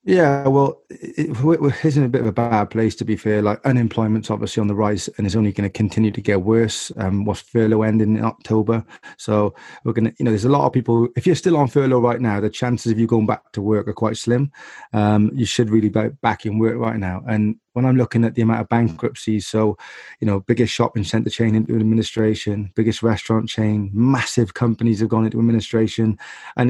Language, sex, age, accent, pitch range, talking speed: English, male, 20-39, British, 110-125 Hz, 225 wpm